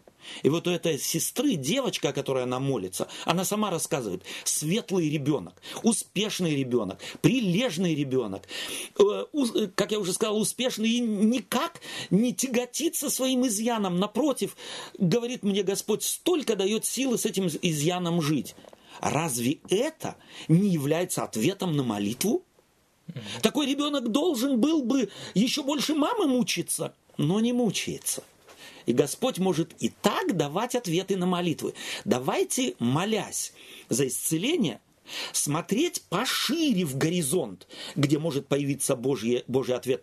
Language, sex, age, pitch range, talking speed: Russian, male, 40-59, 145-230 Hz, 125 wpm